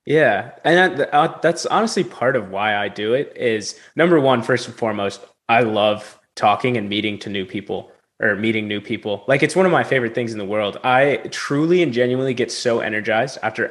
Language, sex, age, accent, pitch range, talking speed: English, male, 20-39, American, 110-135 Hz, 200 wpm